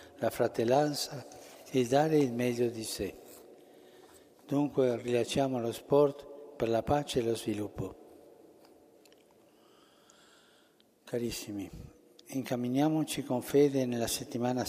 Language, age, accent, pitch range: Italian, 60-79, native, 115-135 Hz